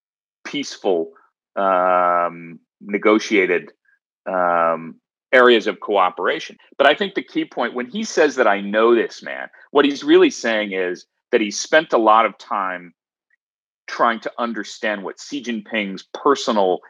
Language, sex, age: Chinese, male, 40-59